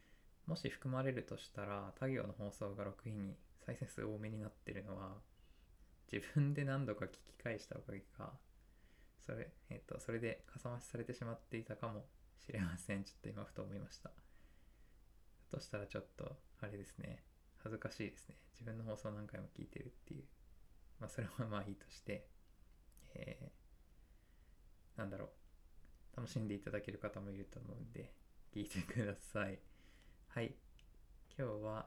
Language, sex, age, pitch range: Japanese, male, 20-39, 100-120 Hz